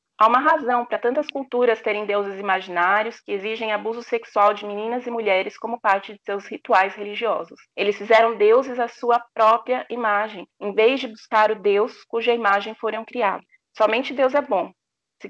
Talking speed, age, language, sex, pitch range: 175 wpm, 30-49, Portuguese, female, 200-240 Hz